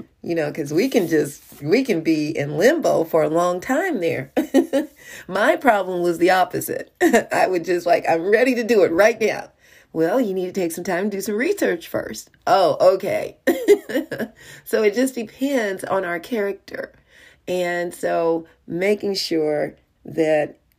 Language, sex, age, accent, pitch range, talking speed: English, female, 40-59, American, 150-195 Hz, 165 wpm